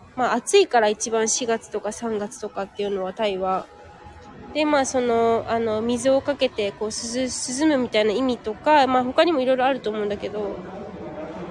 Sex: female